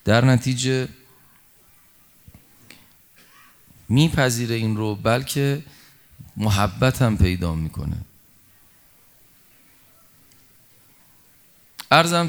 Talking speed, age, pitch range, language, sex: 55 wpm, 30-49, 95-135 Hz, Persian, male